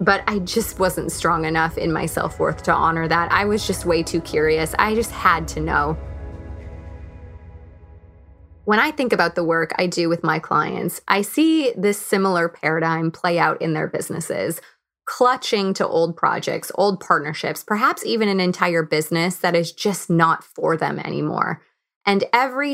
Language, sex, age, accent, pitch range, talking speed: English, female, 20-39, American, 165-200 Hz, 170 wpm